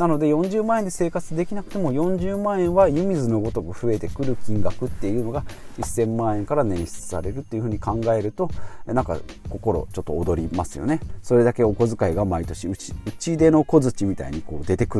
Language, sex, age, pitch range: Japanese, male, 40-59, 95-140 Hz